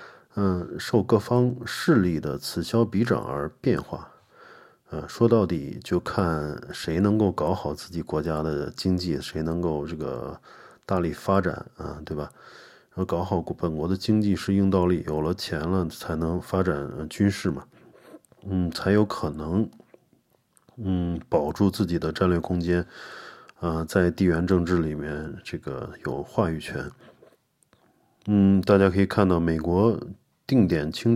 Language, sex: Chinese, male